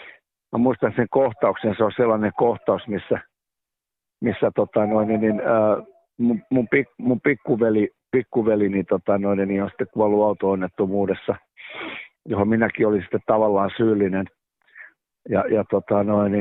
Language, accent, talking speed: Finnish, native, 90 wpm